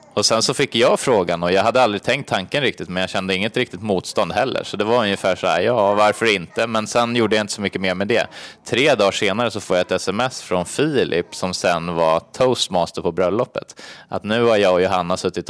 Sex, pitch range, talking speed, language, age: male, 90-110 Hz, 240 wpm, Swedish, 20-39